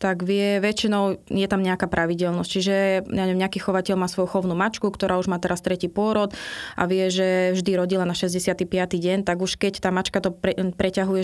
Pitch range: 180-190 Hz